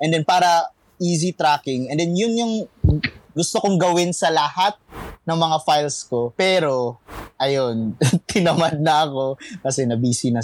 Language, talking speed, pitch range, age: Filipino, 150 wpm, 135-185 Hz, 20-39